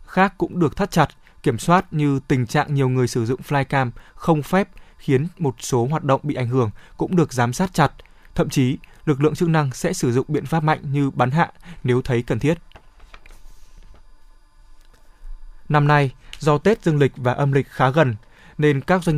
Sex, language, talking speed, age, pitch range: male, Vietnamese, 195 wpm, 20-39, 125-160 Hz